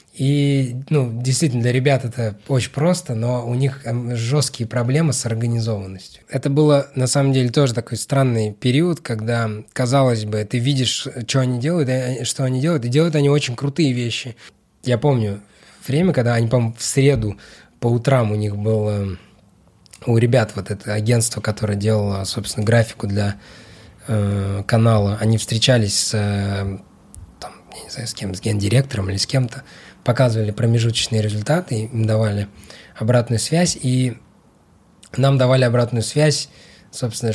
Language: Russian